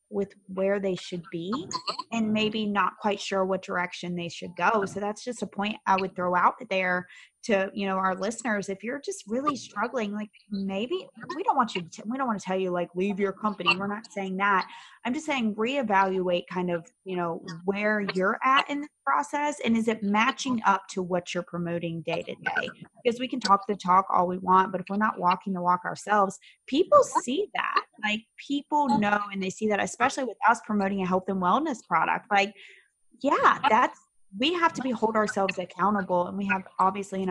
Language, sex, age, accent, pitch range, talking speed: English, female, 20-39, American, 190-235 Hz, 215 wpm